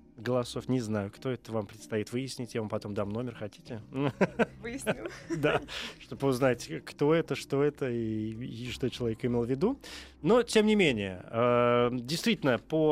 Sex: male